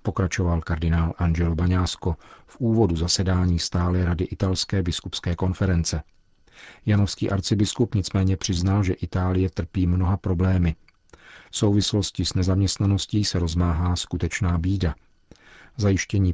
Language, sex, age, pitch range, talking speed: Czech, male, 50-69, 90-100 Hz, 110 wpm